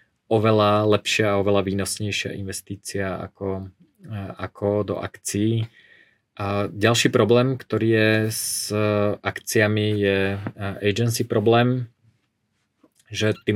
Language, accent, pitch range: Czech, Slovak, 100-110 Hz